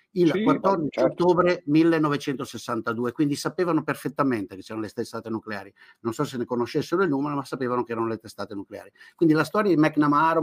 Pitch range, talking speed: 110-155 Hz, 180 wpm